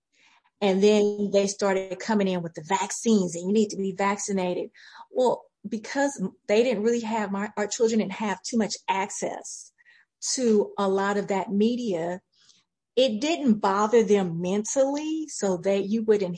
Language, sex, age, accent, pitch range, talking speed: English, female, 40-59, American, 190-230 Hz, 160 wpm